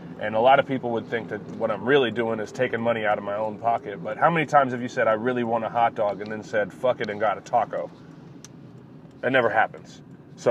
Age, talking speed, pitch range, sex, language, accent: 20-39, 265 wpm, 115-135 Hz, male, English, American